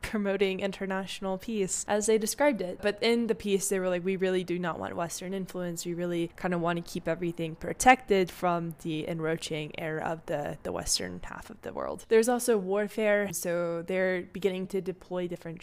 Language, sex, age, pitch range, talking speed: English, female, 10-29, 180-210 Hz, 195 wpm